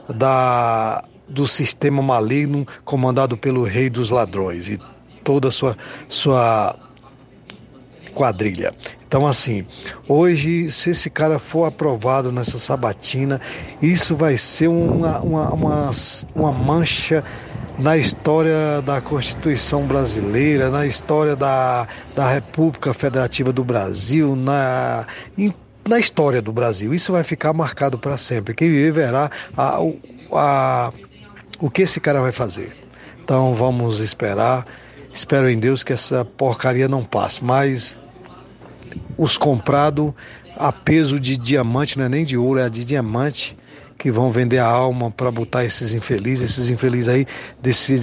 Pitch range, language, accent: 125-145 Hz, Portuguese, Brazilian